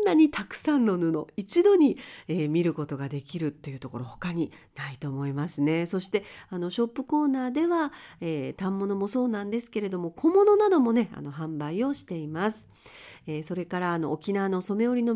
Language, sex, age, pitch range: Japanese, female, 40-59, 155-245 Hz